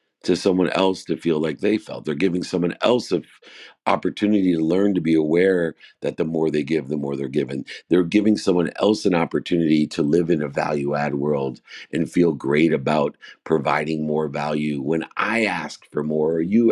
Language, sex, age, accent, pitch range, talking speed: English, male, 50-69, American, 75-90 Hz, 195 wpm